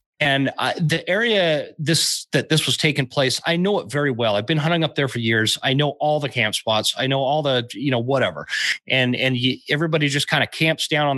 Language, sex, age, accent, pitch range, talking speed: English, male, 30-49, American, 120-155 Hz, 240 wpm